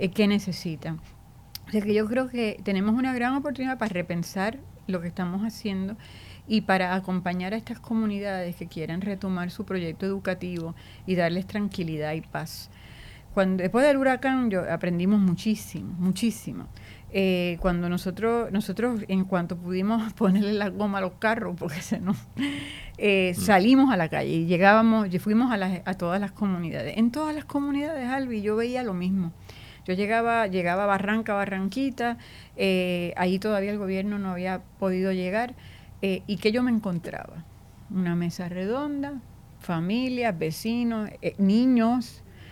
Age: 40-59